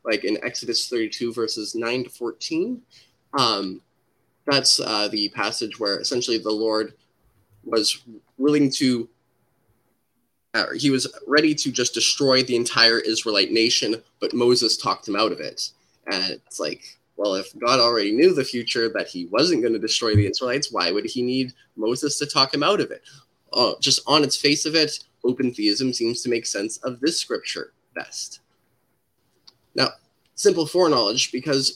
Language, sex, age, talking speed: English, male, 20-39, 165 wpm